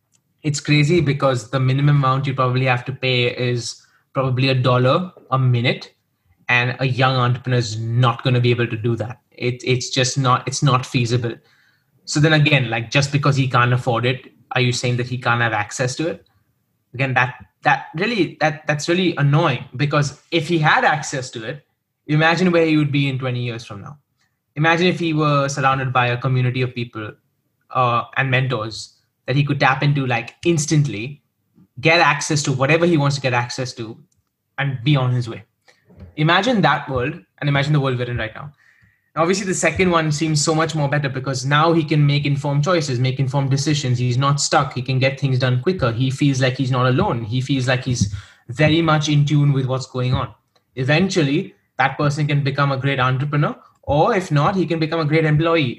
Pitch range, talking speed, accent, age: 125-150 Hz, 205 wpm, Indian, 20-39